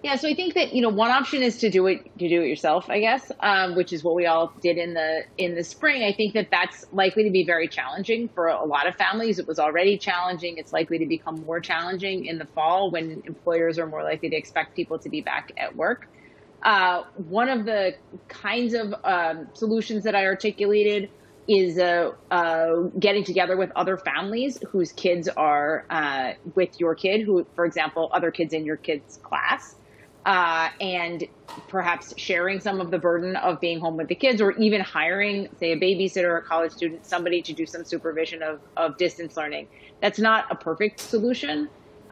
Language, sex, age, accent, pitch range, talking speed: English, female, 30-49, American, 165-205 Hz, 205 wpm